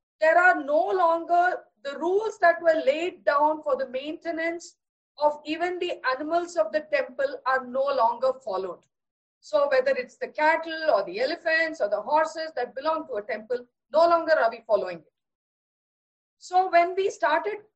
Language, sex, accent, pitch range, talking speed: English, female, Indian, 255-320 Hz, 170 wpm